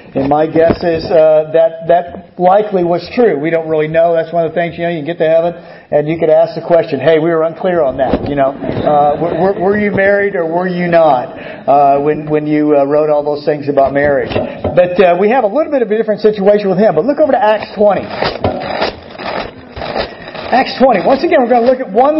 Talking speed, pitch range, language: 240 wpm, 170-270 Hz, English